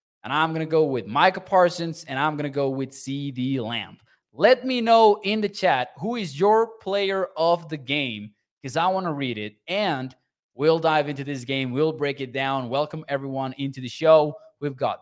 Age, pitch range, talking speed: 20-39, 140-175 Hz, 210 wpm